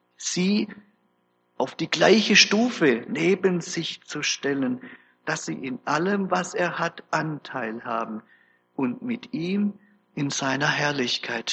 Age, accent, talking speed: 50-69, German, 125 wpm